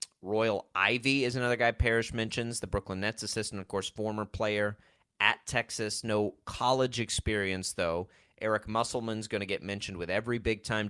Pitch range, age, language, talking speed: 100-125 Hz, 30-49, English, 165 wpm